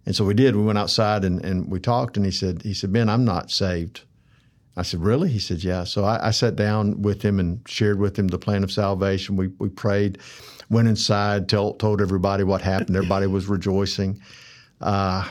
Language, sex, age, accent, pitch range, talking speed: English, male, 50-69, American, 95-110 Hz, 215 wpm